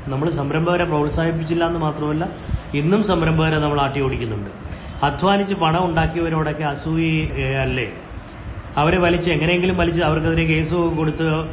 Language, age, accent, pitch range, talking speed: Malayalam, 20-39, native, 135-160 Hz, 105 wpm